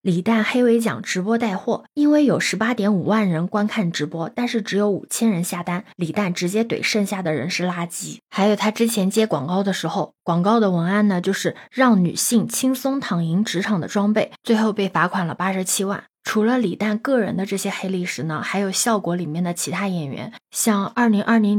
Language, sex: Chinese, female